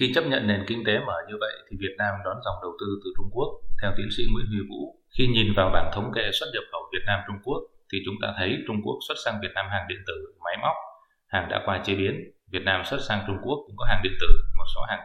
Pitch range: 95-120 Hz